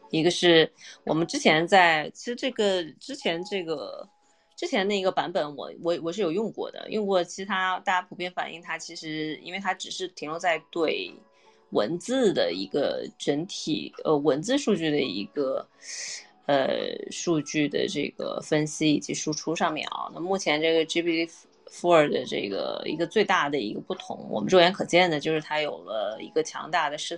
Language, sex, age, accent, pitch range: Chinese, female, 20-39, native, 155-195 Hz